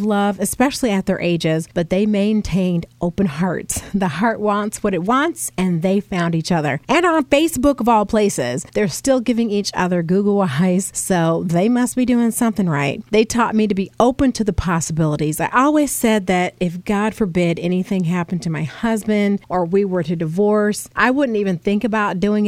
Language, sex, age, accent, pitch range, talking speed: English, female, 40-59, American, 175-215 Hz, 195 wpm